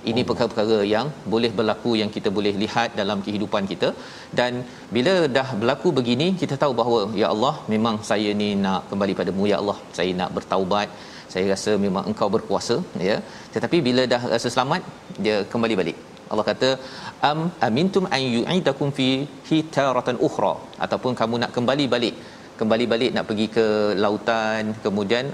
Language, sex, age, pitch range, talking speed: Malayalam, male, 40-59, 105-130 Hz, 165 wpm